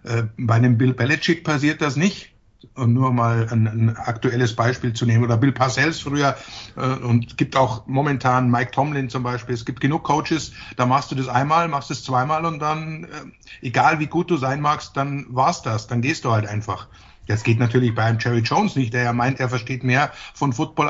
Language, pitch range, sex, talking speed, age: English, 125-150 Hz, male, 210 wpm, 60-79